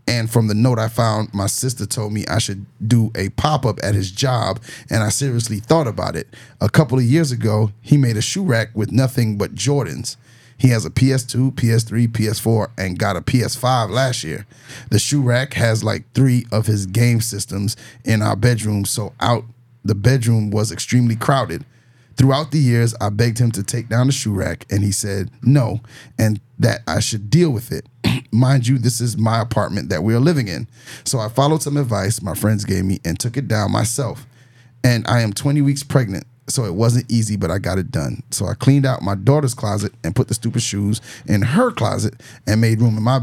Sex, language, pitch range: male, English, 110-130 Hz